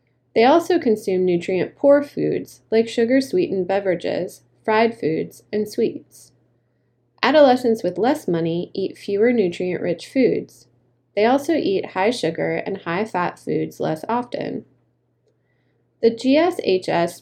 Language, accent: English, American